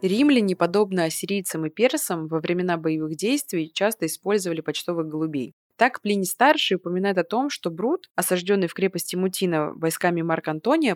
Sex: female